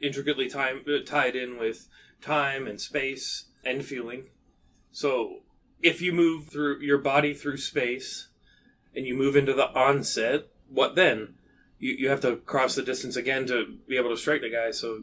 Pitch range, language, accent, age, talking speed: 115-145 Hz, English, American, 30-49, 175 wpm